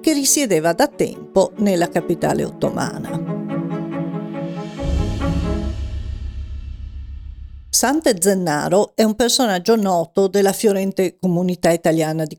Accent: native